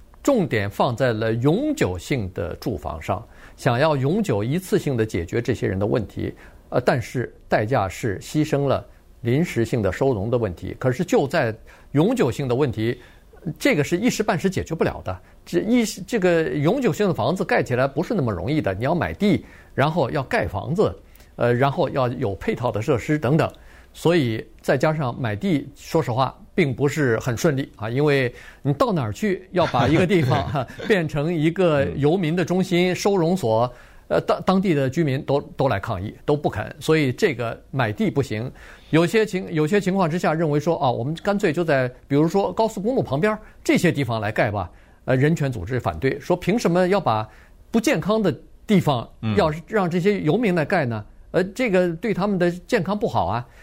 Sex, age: male, 50-69